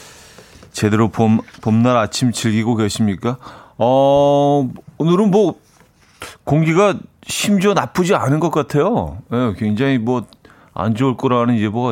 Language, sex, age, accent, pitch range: Korean, male, 30-49, native, 100-135 Hz